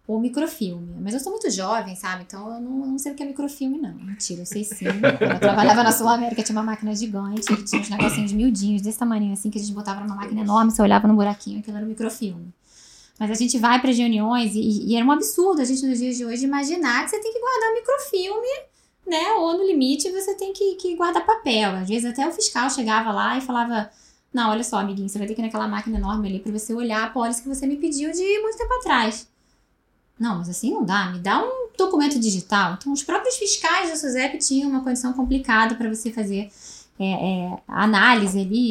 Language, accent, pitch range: Portuguese, Brazilian, 210-280 Hz